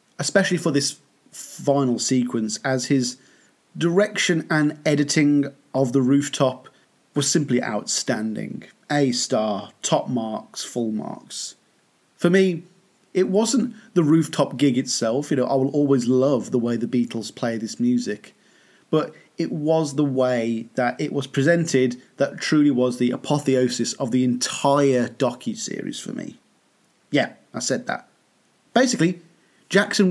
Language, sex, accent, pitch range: English, male, British, 130-165 Hz